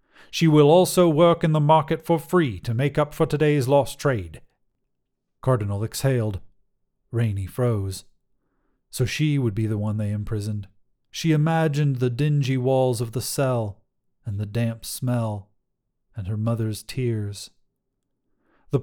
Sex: male